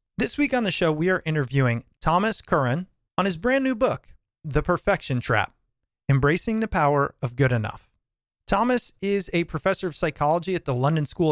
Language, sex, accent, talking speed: English, male, American, 180 wpm